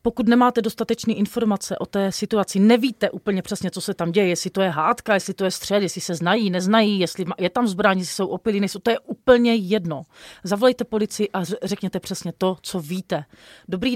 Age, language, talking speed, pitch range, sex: 30-49, Slovak, 200 wpm, 190-235 Hz, female